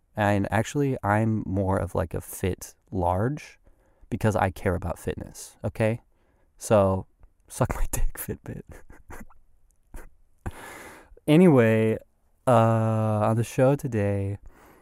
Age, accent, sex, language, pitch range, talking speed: 20-39, American, male, English, 90-115 Hz, 105 wpm